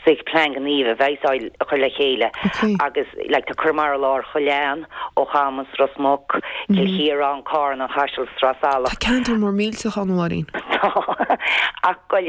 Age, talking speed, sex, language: 40-59, 125 wpm, female, English